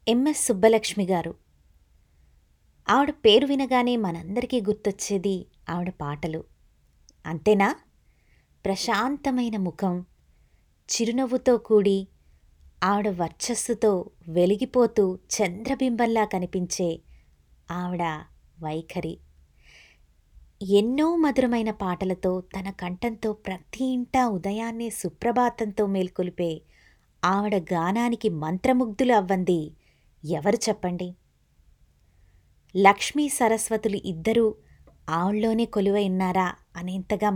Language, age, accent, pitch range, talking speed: Telugu, 20-39, native, 165-230 Hz, 70 wpm